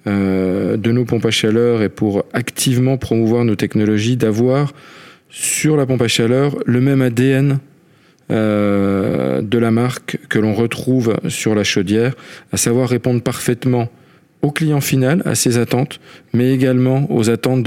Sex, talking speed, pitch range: male, 145 wpm, 110-130 Hz